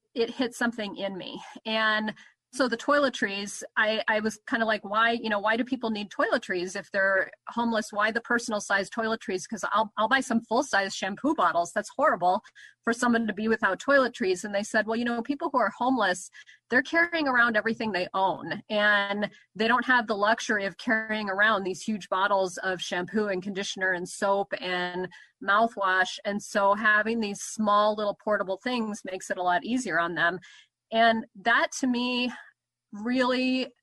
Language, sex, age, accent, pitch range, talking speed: English, female, 30-49, American, 200-235 Hz, 185 wpm